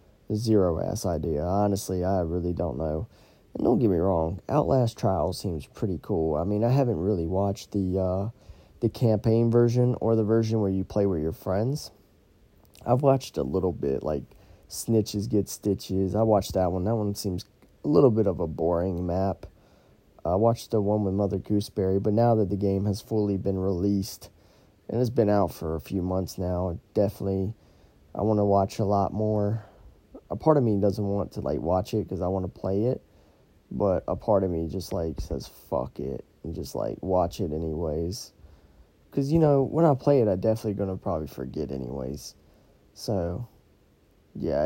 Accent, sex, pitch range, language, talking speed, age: American, male, 90-110 Hz, English, 190 wpm, 20-39